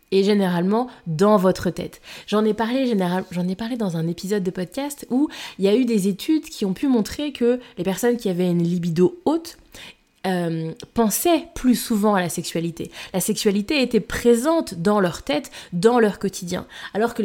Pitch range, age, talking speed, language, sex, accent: 180-245 Hz, 20-39, 190 wpm, French, female, French